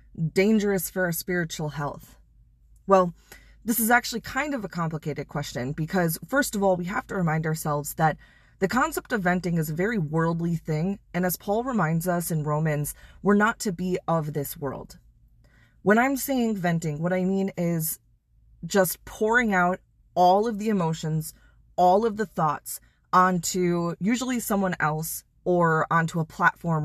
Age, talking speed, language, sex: 20-39, 165 wpm, English, female